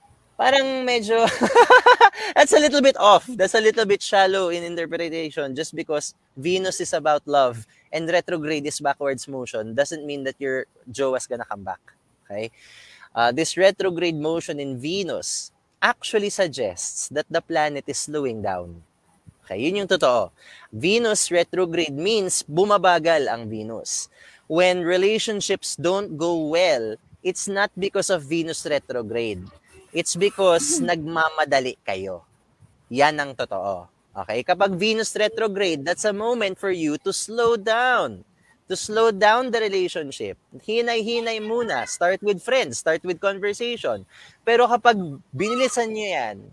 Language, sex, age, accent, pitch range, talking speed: Filipino, male, 20-39, native, 145-215 Hz, 140 wpm